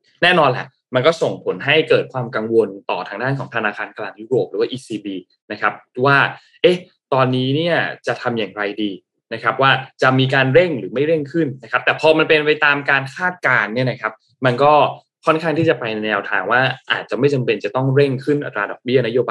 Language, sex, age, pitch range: Thai, male, 20-39, 115-150 Hz